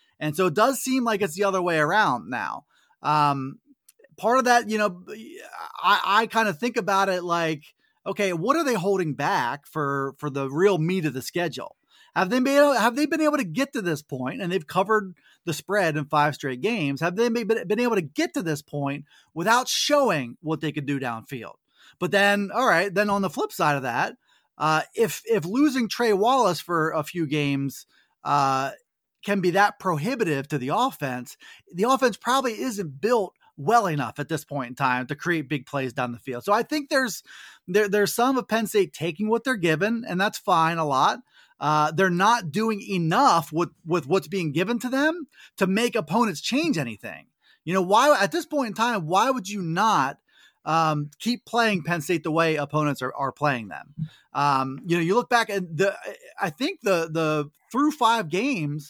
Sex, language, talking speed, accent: male, English, 205 wpm, American